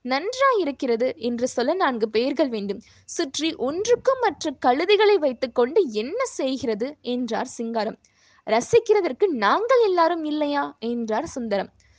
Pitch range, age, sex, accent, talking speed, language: 240-350 Hz, 20-39, female, native, 110 wpm, Tamil